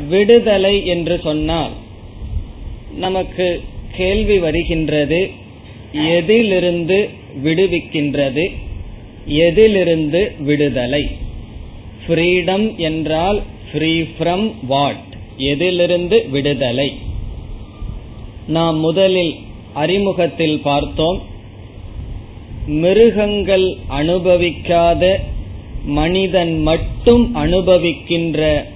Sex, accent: male, native